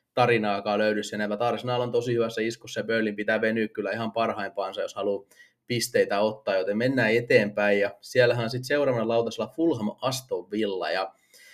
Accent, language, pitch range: native, Finnish, 115-140 Hz